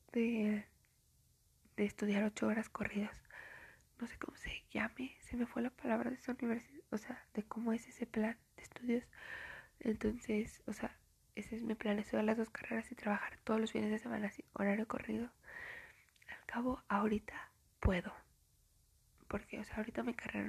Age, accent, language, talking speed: 20-39, Mexican, Spanish, 175 wpm